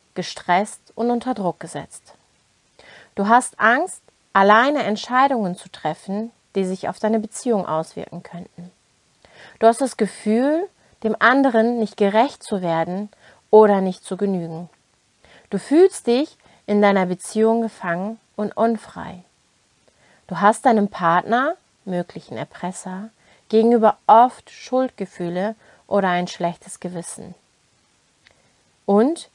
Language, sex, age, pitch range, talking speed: German, female, 30-49, 180-230 Hz, 115 wpm